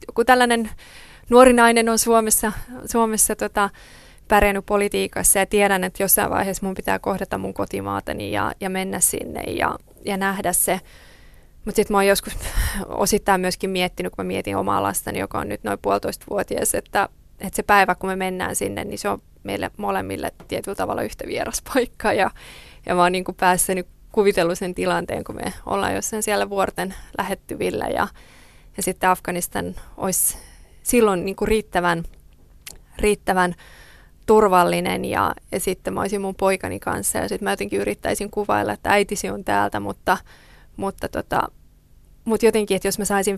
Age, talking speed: 20-39, 155 wpm